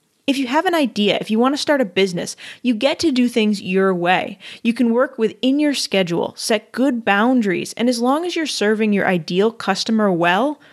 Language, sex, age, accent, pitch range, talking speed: English, female, 20-39, American, 190-260 Hz, 215 wpm